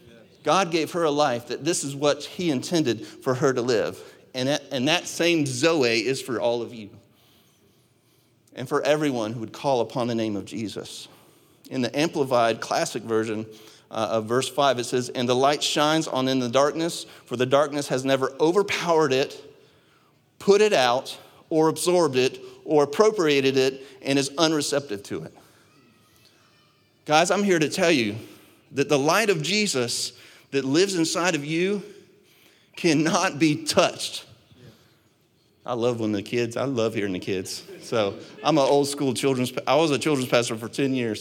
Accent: American